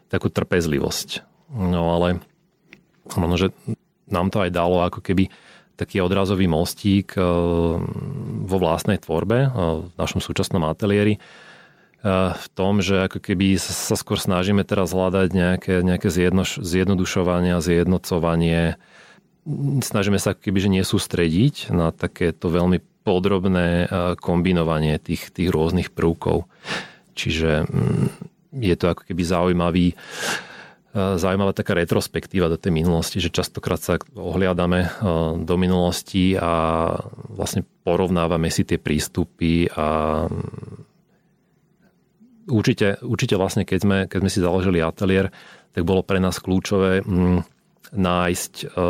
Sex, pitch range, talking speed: male, 85-100 Hz, 115 wpm